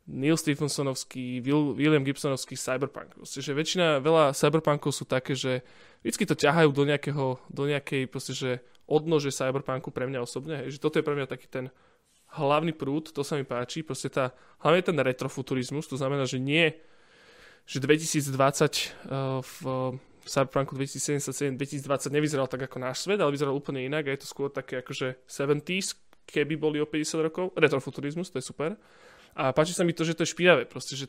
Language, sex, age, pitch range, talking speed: Slovak, male, 20-39, 135-160 Hz, 175 wpm